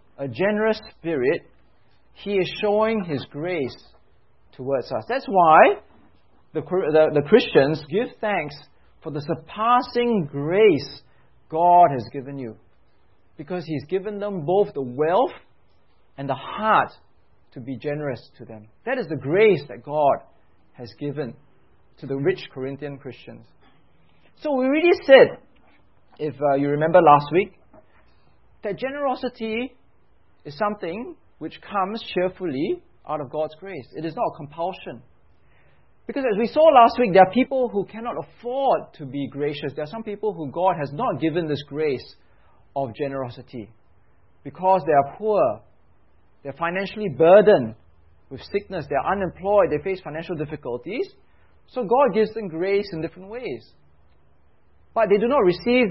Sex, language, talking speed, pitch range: male, English, 150 wpm, 135-205 Hz